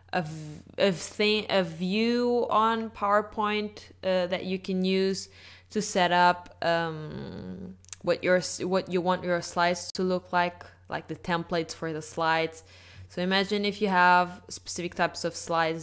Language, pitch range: English, 155-180 Hz